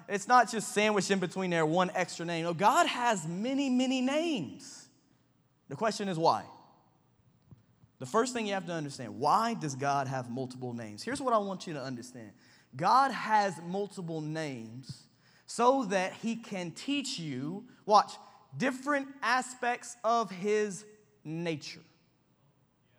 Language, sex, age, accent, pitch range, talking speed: English, male, 20-39, American, 165-255 Hz, 145 wpm